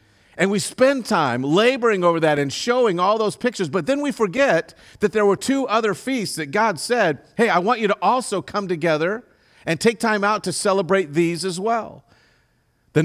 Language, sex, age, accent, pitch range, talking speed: English, male, 50-69, American, 160-200 Hz, 200 wpm